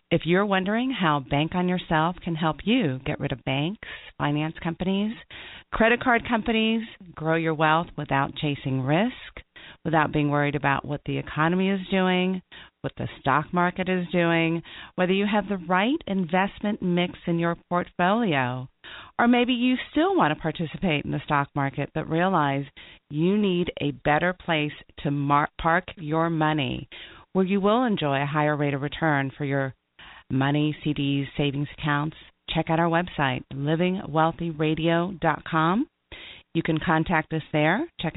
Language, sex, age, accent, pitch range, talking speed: English, female, 40-59, American, 145-185 Hz, 155 wpm